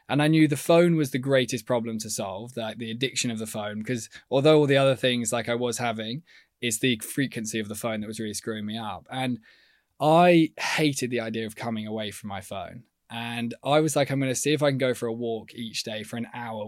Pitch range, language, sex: 115-135 Hz, English, male